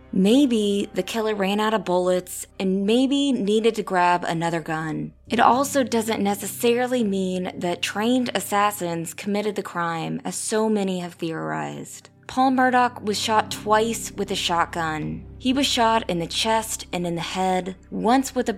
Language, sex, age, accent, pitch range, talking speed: English, female, 20-39, American, 175-235 Hz, 165 wpm